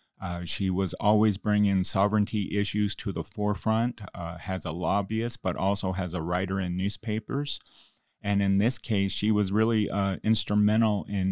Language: English